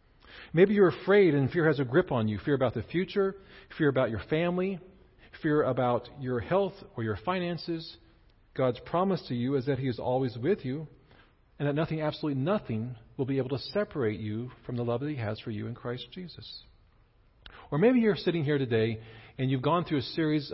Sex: male